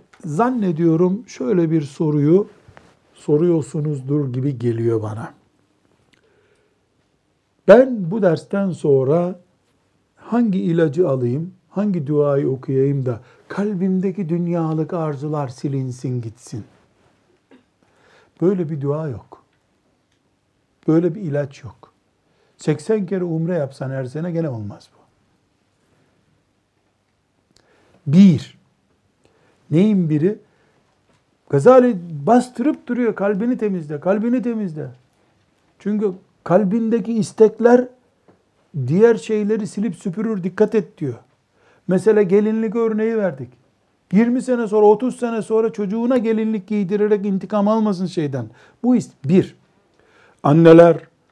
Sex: male